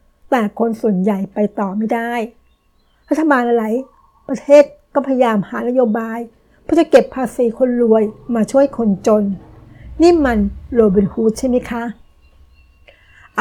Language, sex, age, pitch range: Thai, female, 60-79, 215-255 Hz